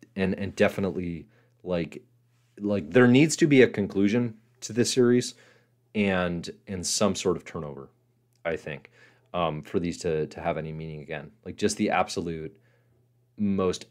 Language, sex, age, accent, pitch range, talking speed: English, male, 30-49, American, 90-120 Hz, 155 wpm